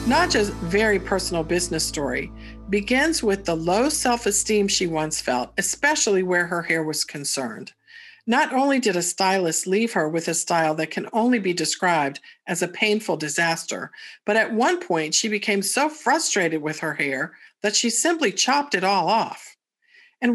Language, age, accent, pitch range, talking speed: English, 50-69, American, 170-240 Hz, 170 wpm